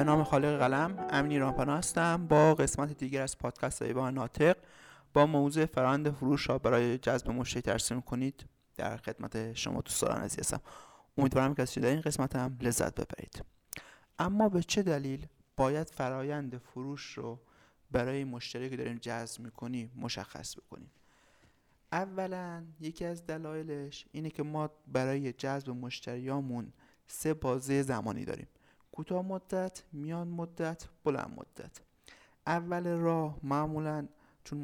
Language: Persian